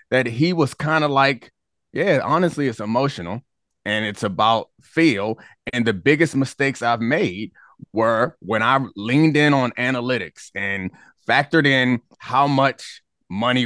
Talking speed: 145 wpm